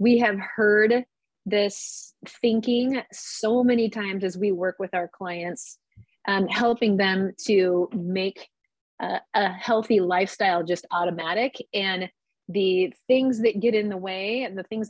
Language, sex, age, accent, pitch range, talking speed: English, female, 30-49, American, 190-230 Hz, 145 wpm